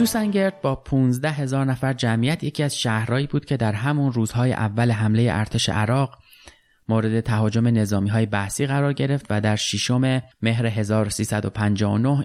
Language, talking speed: Persian, 145 wpm